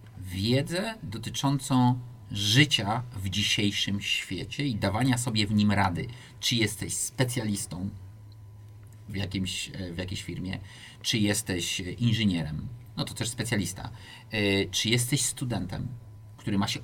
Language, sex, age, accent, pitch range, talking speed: Polish, male, 40-59, native, 100-125 Hz, 120 wpm